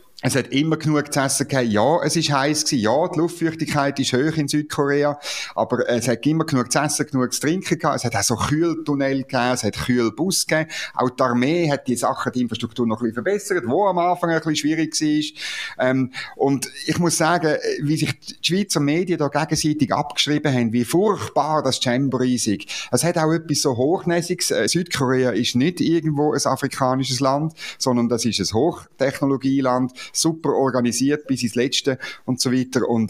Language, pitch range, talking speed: German, 120-155 Hz, 190 wpm